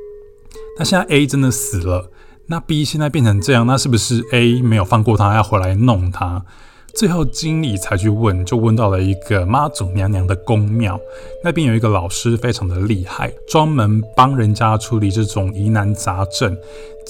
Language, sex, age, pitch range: Chinese, male, 20-39, 100-130 Hz